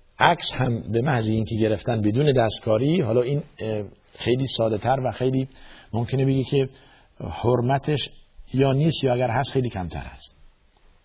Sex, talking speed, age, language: male, 140 wpm, 50-69, Persian